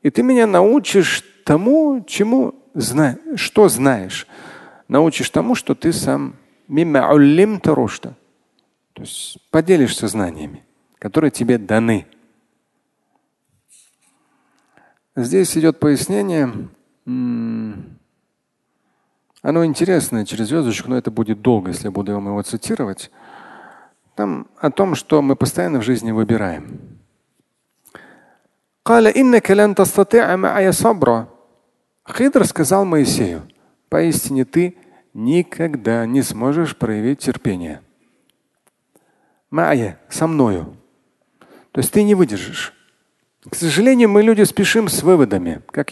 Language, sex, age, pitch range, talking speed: Russian, male, 40-59, 120-185 Hz, 100 wpm